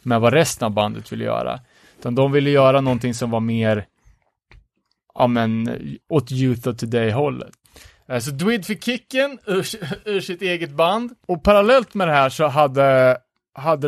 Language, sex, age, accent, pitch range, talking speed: Swedish, male, 30-49, Norwegian, 125-170 Hz, 170 wpm